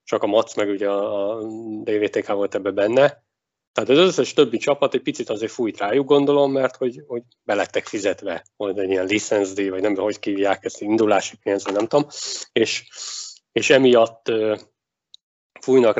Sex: male